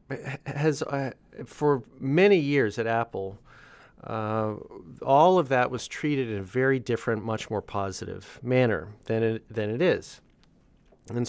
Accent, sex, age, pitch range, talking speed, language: American, male, 40-59, 115-150 Hz, 140 wpm, English